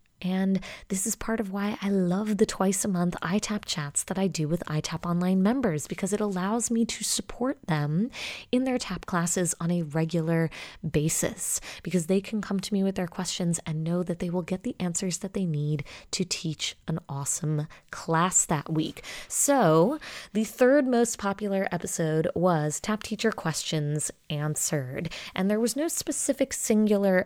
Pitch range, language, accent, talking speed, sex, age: 160-210 Hz, English, American, 175 wpm, female, 20-39